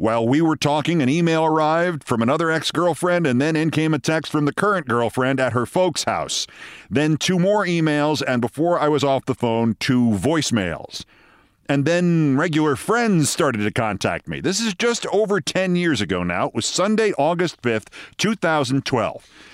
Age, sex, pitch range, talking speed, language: 50-69, male, 130-175 Hz, 180 wpm, English